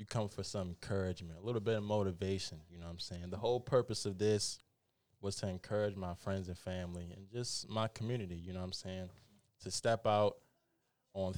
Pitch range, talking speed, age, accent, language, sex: 100-135 Hz, 210 wpm, 20-39, American, English, male